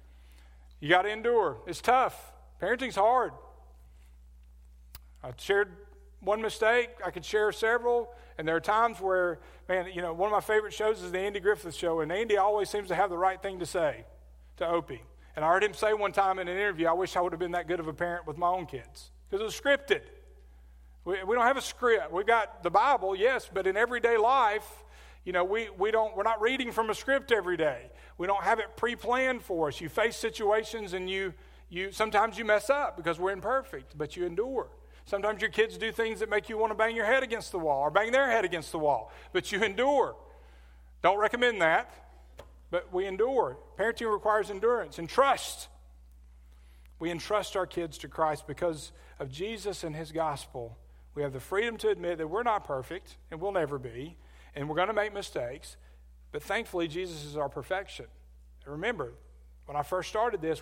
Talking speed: 205 wpm